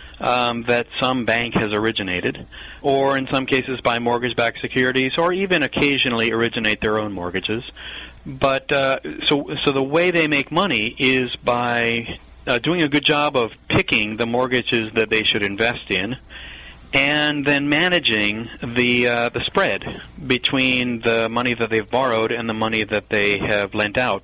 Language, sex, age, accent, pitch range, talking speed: English, male, 40-59, American, 105-130 Hz, 165 wpm